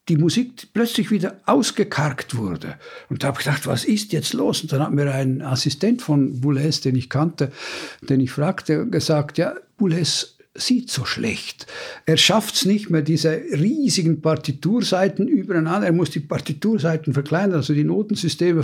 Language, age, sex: German, 60-79, male